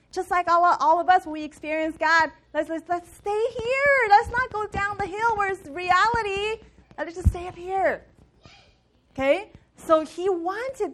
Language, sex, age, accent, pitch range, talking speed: English, female, 30-49, American, 180-280 Hz, 180 wpm